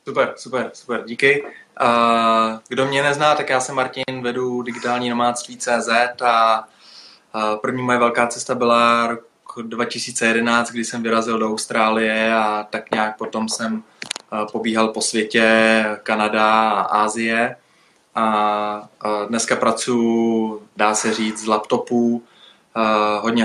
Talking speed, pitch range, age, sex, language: 125 wpm, 110-120 Hz, 20-39, male, Czech